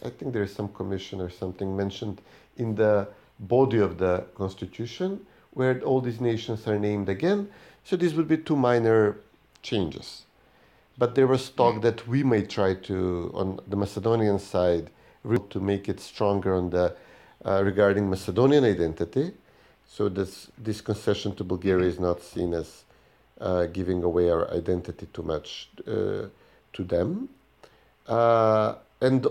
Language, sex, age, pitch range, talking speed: English, male, 50-69, 95-115 Hz, 150 wpm